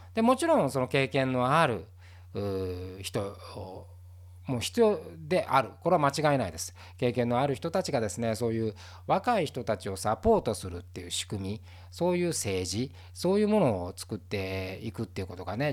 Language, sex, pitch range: Japanese, male, 90-140 Hz